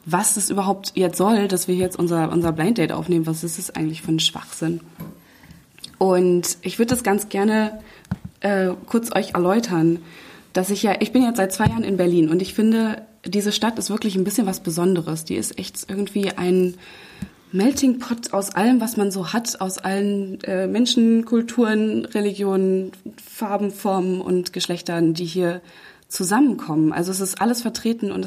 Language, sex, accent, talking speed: German, female, German, 180 wpm